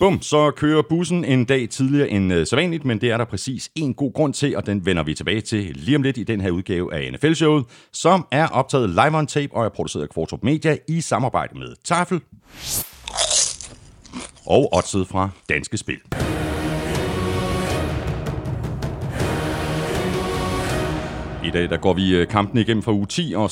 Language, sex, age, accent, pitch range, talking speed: Danish, male, 60-79, native, 85-130 Hz, 165 wpm